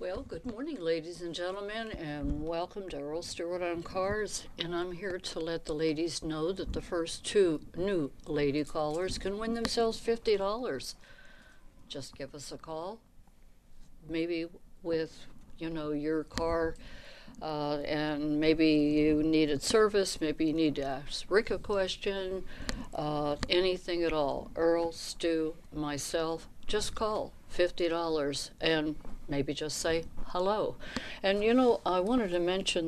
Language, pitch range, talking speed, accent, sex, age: English, 150-175 Hz, 145 wpm, American, female, 60-79